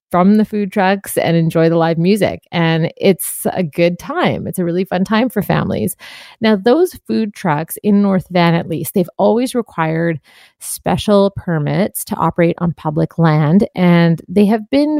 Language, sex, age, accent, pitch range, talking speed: English, female, 30-49, American, 165-205 Hz, 175 wpm